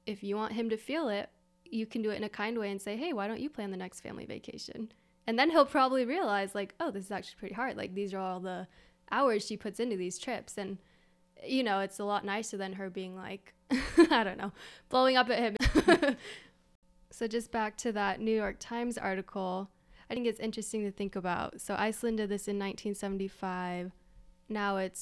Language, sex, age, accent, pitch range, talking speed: English, female, 10-29, American, 190-220 Hz, 220 wpm